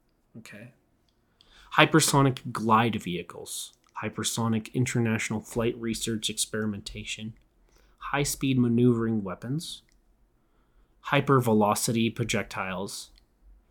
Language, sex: English, male